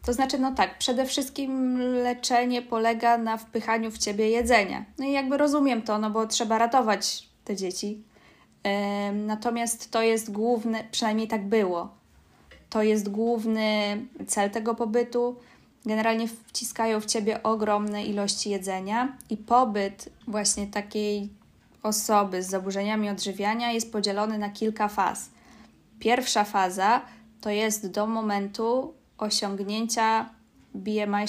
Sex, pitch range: female, 210-240 Hz